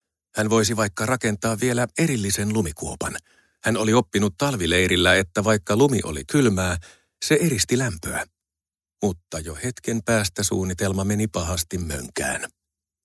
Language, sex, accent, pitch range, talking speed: Finnish, male, native, 90-115 Hz, 125 wpm